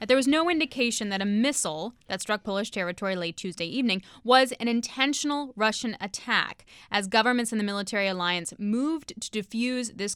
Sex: female